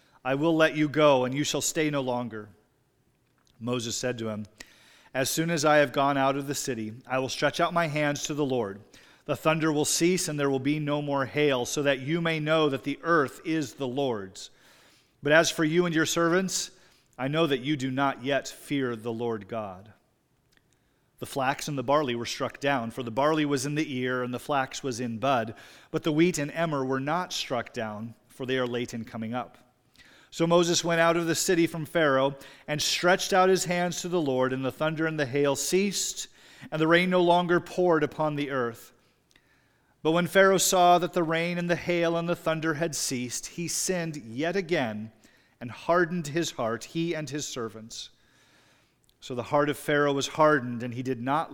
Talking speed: 210 wpm